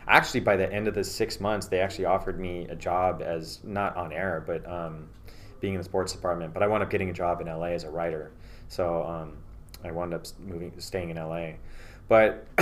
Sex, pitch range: male, 90-105 Hz